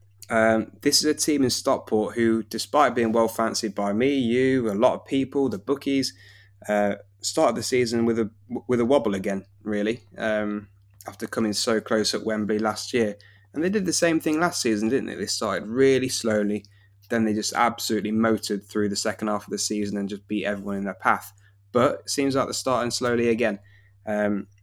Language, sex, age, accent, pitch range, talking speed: English, male, 20-39, British, 105-120 Hz, 200 wpm